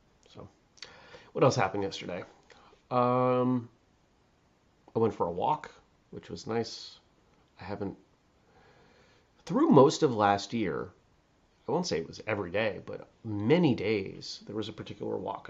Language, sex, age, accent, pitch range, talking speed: English, male, 30-49, American, 95-130 Hz, 135 wpm